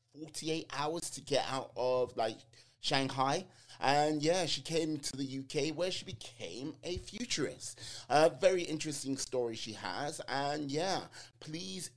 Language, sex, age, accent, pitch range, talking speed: English, male, 30-49, British, 125-170 Hz, 150 wpm